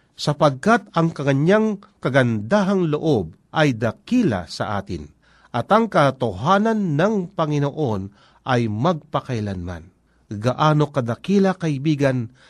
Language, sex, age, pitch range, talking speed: Filipino, male, 50-69, 125-180 Hz, 90 wpm